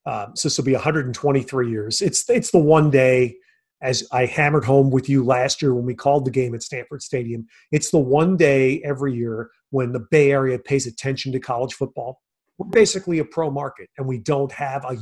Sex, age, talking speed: male, 40-59, 210 wpm